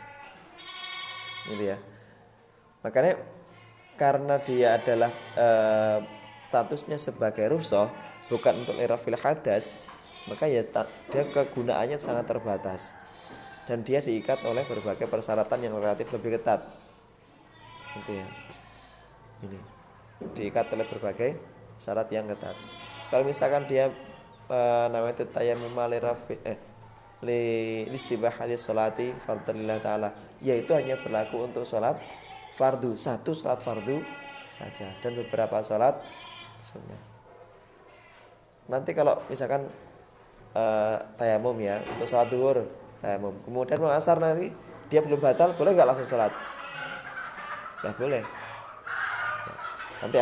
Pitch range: 105-135 Hz